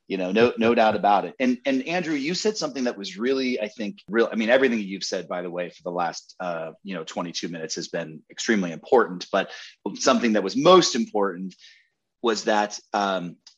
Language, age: English, 30-49